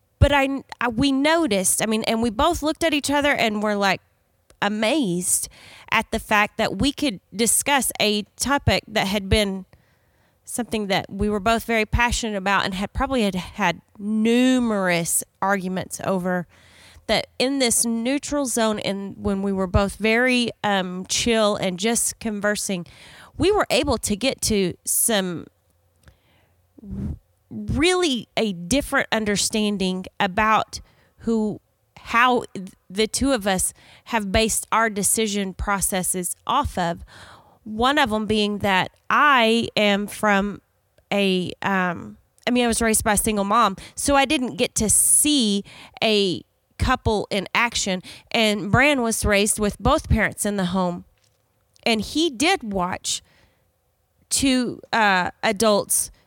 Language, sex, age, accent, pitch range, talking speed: English, female, 30-49, American, 190-235 Hz, 140 wpm